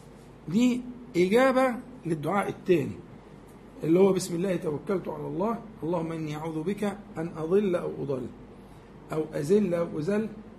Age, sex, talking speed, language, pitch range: 50-69, male, 130 wpm, Arabic, 175-235 Hz